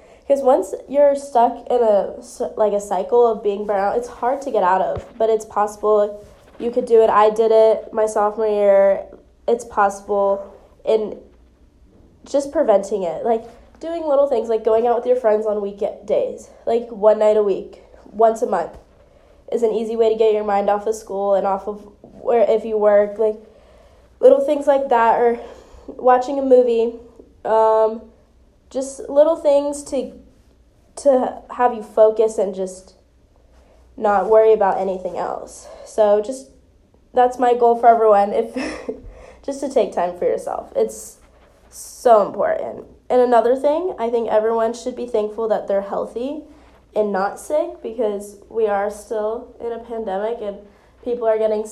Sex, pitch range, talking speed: female, 210-250 Hz, 170 wpm